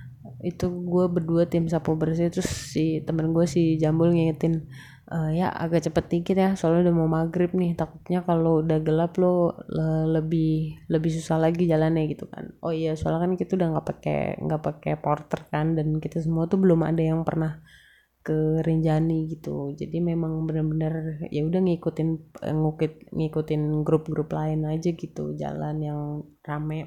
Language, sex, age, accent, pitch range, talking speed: Indonesian, female, 20-39, native, 155-175 Hz, 165 wpm